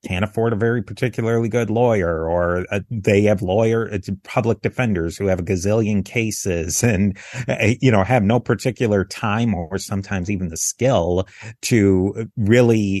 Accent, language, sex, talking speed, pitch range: American, English, male, 160 wpm, 95-115 Hz